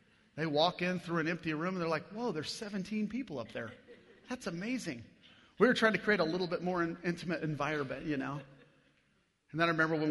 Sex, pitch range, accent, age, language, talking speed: male, 135-165 Hz, American, 40-59, English, 215 wpm